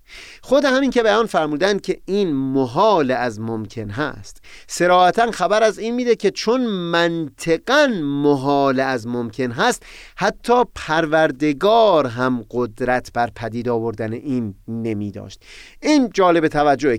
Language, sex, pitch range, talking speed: Persian, male, 125-210 Hz, 125 wpm